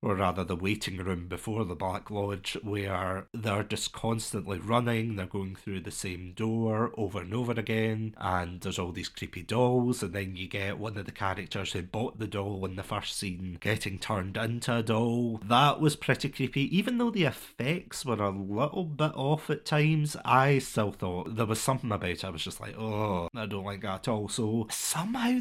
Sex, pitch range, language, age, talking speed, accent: male, 100-130 Hz, English, 30-49, 205 wpm, British